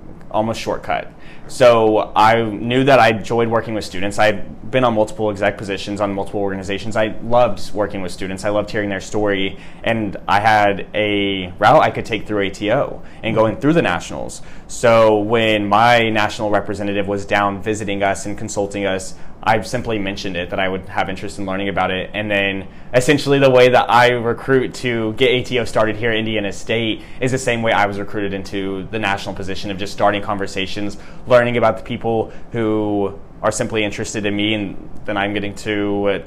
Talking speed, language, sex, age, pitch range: 195 wpm, English, male, 20-39, 100-115 Hz